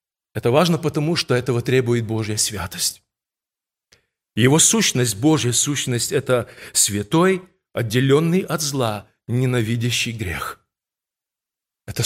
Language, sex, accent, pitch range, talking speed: Russian, male, native, 120-195 Hz, 100 wpm